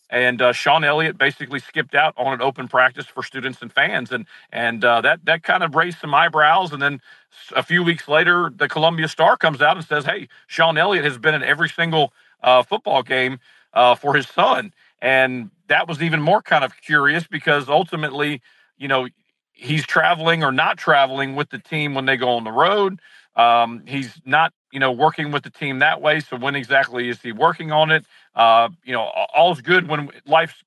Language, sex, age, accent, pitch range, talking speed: English, male, 50-69, American, 125-160 Hz, 205 wpm